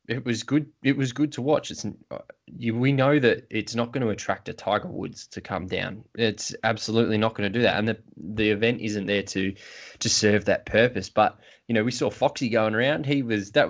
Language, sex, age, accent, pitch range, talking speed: English, male, 20-39, Australian, 95-110 Hz, 230 wpm